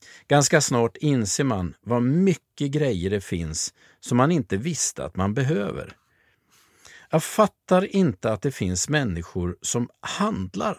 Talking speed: 140 wpm